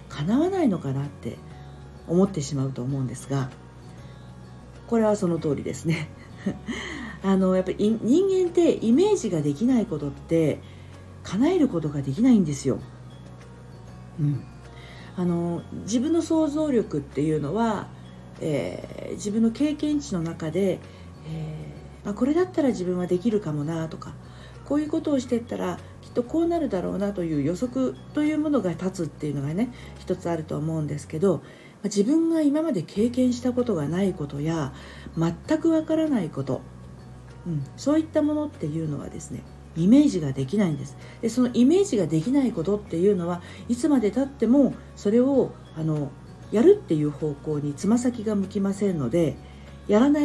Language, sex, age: Japanese, female, 50-69